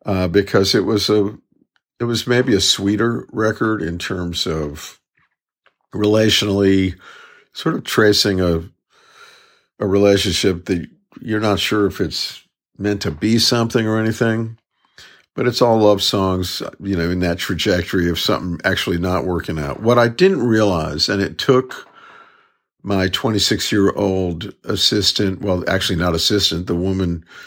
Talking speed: 145 wpm